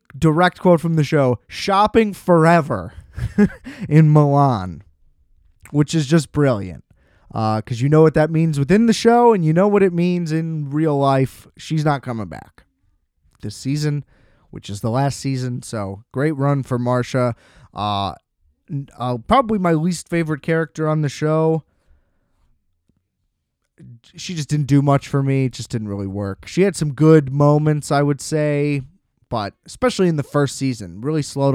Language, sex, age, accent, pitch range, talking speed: English, male, 20-39, American, 105-155 Hz, 165 wpm